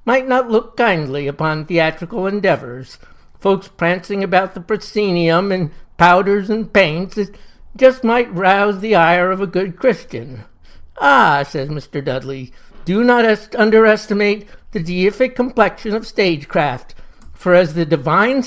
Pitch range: 165-210 Hz